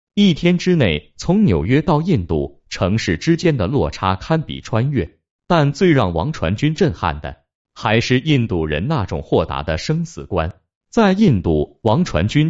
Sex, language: male, Chinese